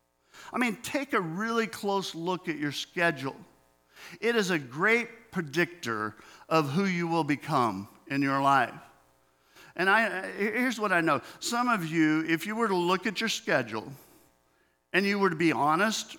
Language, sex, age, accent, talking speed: English, male, 50-69, American, 170 wpm